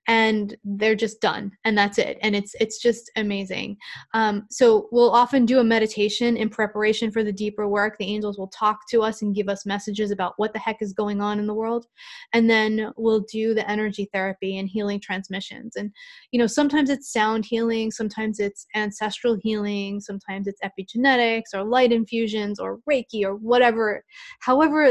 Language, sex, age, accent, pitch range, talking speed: English, female, 20-39, American, 200-230 Hz, 185 wpm